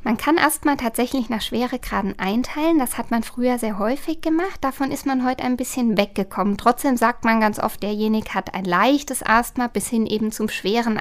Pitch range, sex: 215-260 Hz, female